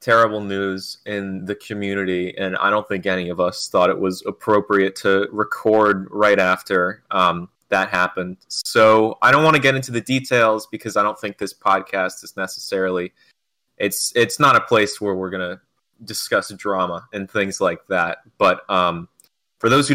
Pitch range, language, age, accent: 95-115 Hz, English, 20-39, American